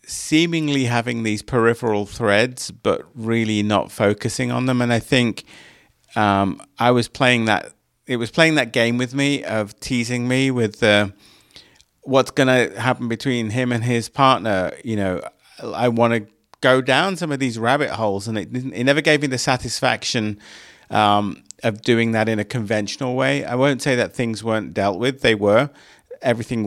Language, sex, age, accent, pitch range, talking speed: English, male, 40-59, British, 105-130 Hz, 175 wpm